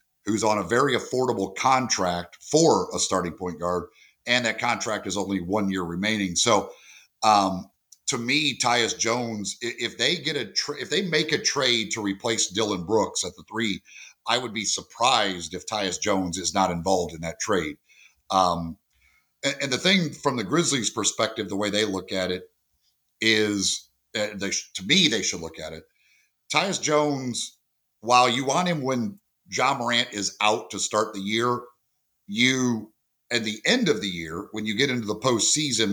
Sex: male